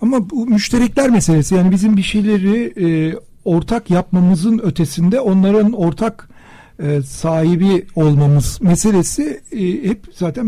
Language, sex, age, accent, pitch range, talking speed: Turkish, male, 60-79, native, 160-215 Hz, 120 wpm